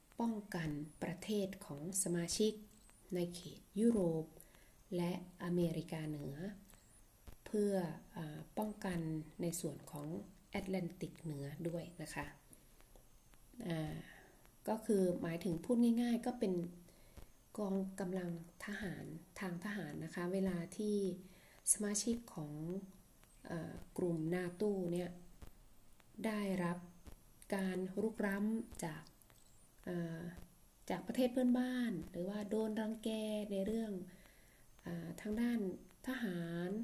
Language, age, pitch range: Thai, 20-39, 165-205 Hz